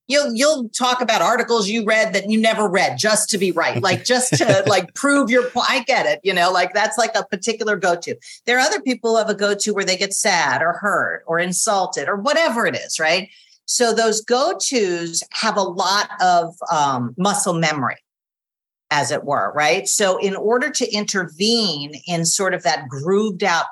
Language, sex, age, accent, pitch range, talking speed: English, female, 50-69, American, 165-220 Hz, 205 wpm